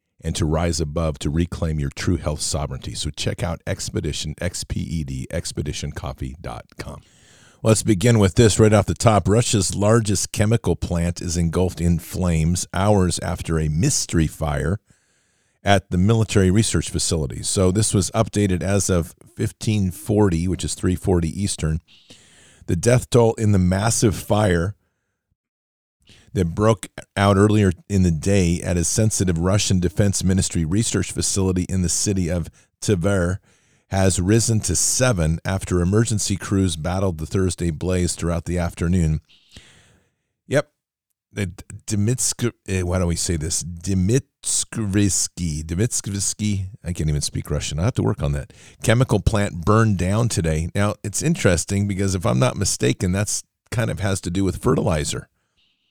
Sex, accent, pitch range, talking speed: male, American, 85-105 Hz, 145 wpm